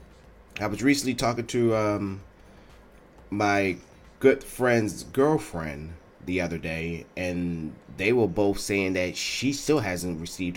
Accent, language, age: American, English, 30-49